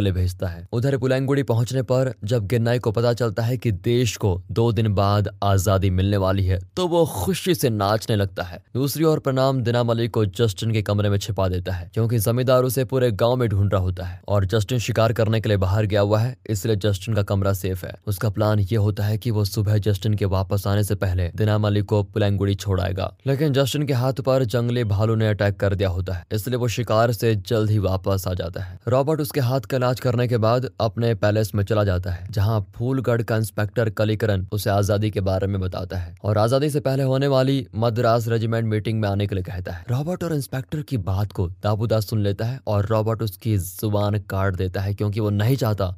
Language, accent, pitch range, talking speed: Hindi, native, 100-125 Hz, 195 wpm